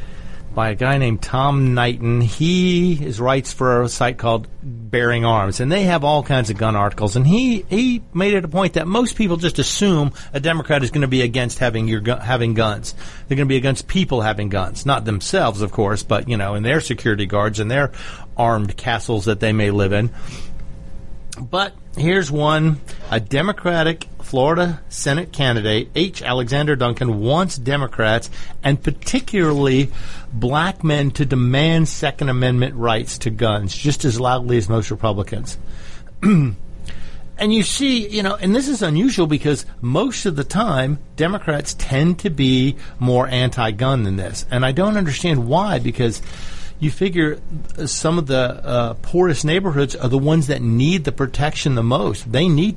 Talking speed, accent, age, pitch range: 170 wpm, American, 40-59, 115-160 Hz